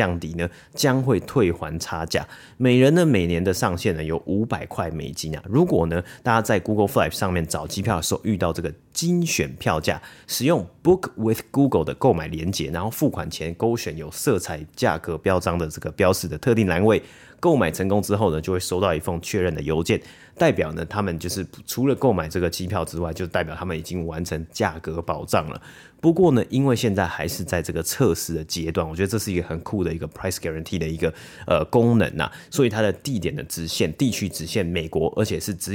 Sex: male